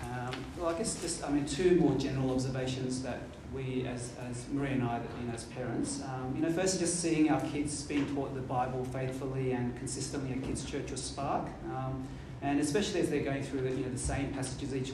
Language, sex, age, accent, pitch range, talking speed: English, male, 30-49, Australian, 130-145 Hz, 220 wpm